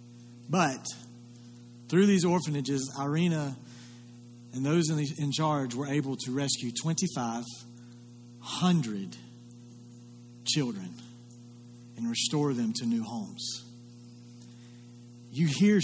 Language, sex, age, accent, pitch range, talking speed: English, male, 40-59, American, 120-160 Hz, 90 wpm